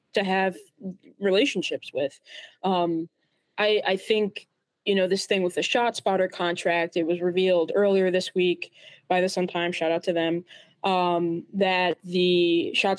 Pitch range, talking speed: 175-200 Hz, 160 wpm